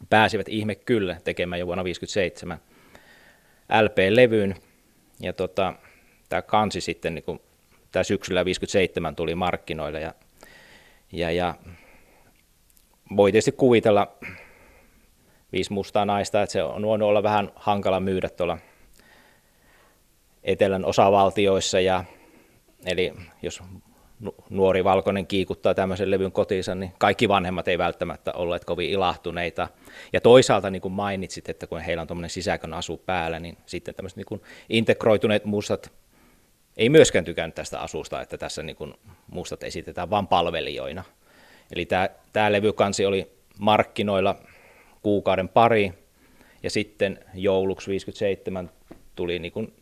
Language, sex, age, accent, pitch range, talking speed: Finnish, male, 20-39, native, 90-105 Hz, 125 wpm